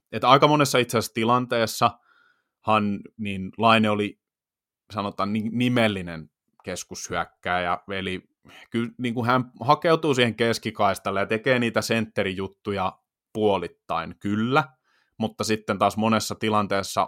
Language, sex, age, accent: Finnish, male, 20-39, native